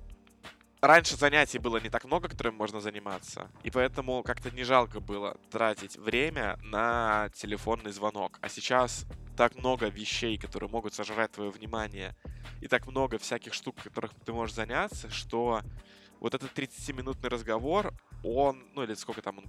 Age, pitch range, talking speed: 20-39, 105-125 Hz, 155 wpm